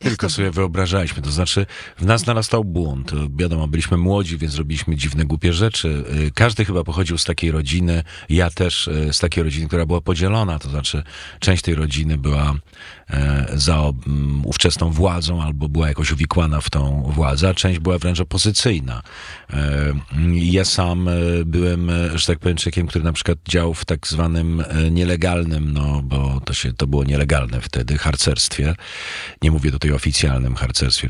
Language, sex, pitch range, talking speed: Polish, male, 75-90 Hz, 160 wpm